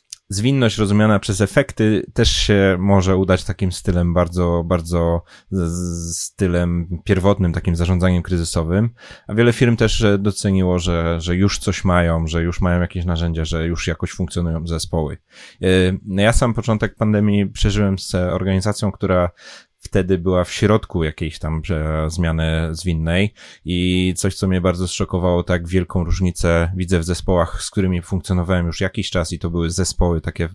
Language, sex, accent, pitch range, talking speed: Polish, male, native, 85-95 Hz, 150 wpm